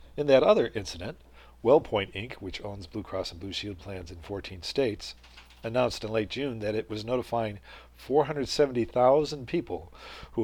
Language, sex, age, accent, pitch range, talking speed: English, male, 50-69, American, 90-115 Hz, 160 wpm